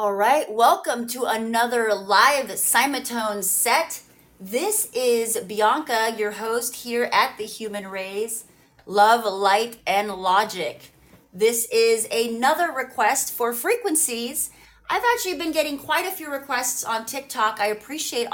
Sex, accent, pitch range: female, American, 215-260 Hz